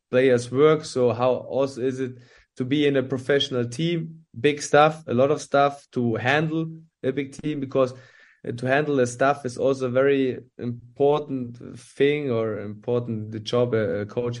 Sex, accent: male, German